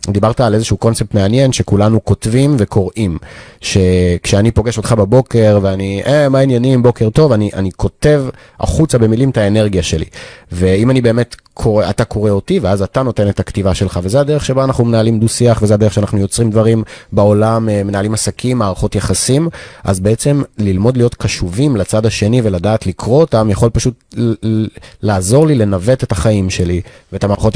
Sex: male